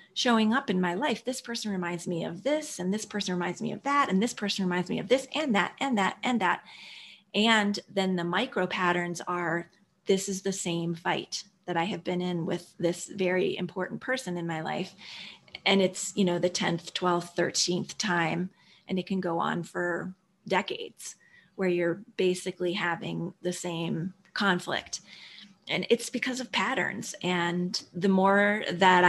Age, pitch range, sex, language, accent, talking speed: 30-49, 180-205 Hz, female, English, American, 180 wpm